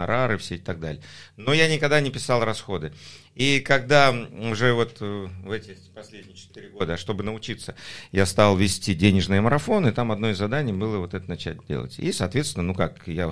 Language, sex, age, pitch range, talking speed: Russian, male, 50-69, 95-120 Hz, 185 wpm